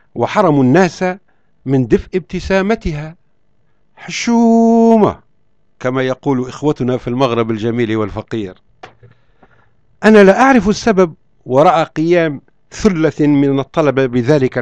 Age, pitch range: 50-69, 130-175 Hz